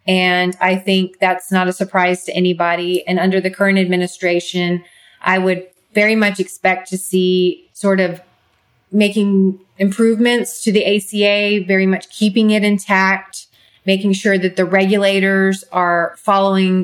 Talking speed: 145 wpm